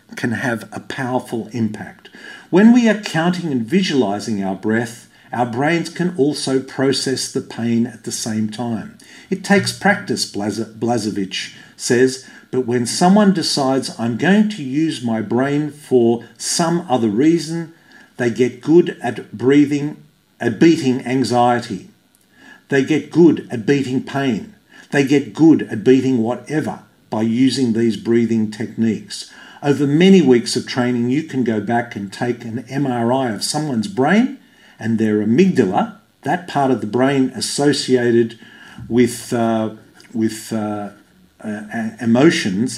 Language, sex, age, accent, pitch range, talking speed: English, male, 50-69, Australian, 115-145 Hz, 140 wpm